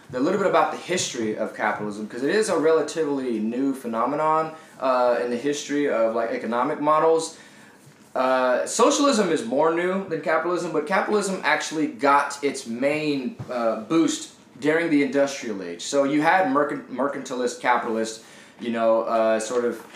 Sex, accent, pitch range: male, American, 115-145 Hz